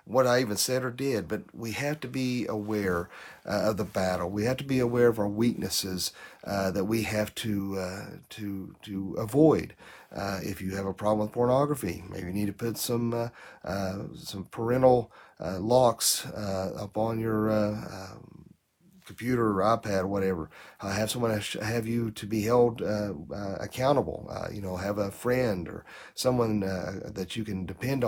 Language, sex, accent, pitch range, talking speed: English, male, American, 100-125 Hz, 185 wpm